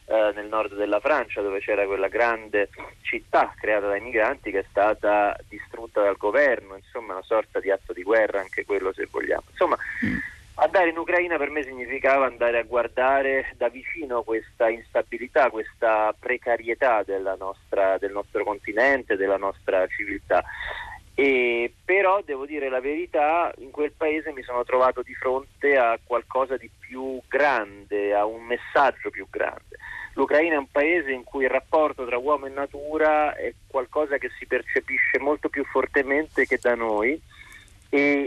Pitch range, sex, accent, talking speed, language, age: 110-155 Hz, male, native, 155 wpm, Italian, 30-49